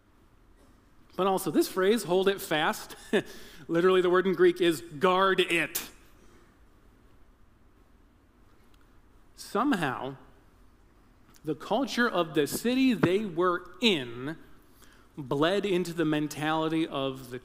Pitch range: 145-180 Hz